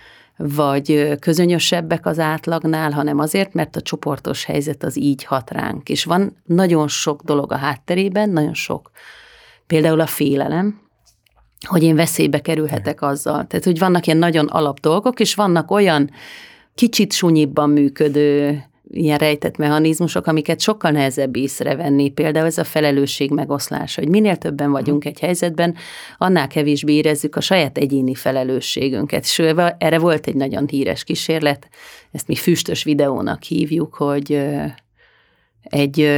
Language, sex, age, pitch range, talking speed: Hungarian, female, 30-49, 140-165 Hz, 140 wpm